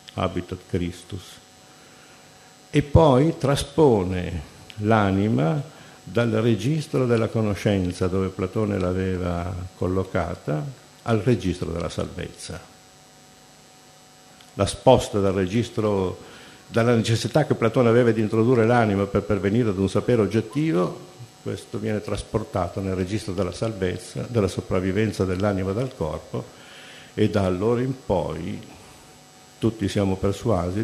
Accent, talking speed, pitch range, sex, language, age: native, 110 wpm, 90-110 Hz, male, Italian, 50-69